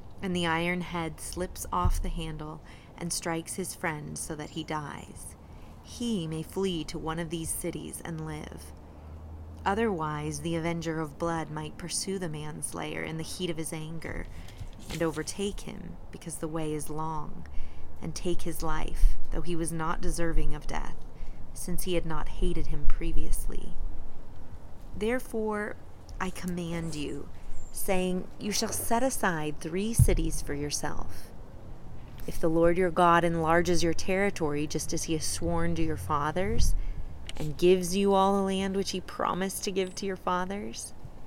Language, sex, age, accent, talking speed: English, female, 30-49, American, 160 wpm